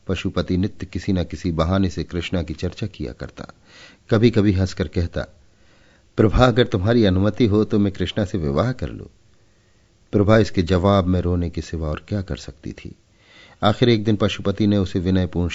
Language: Hindi